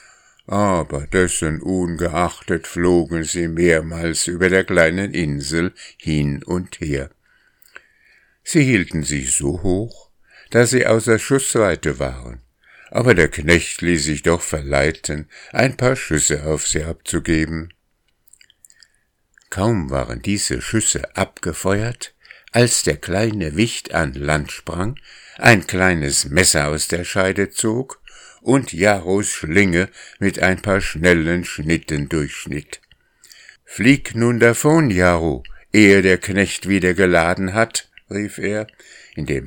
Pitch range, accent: 80-105 Hz, German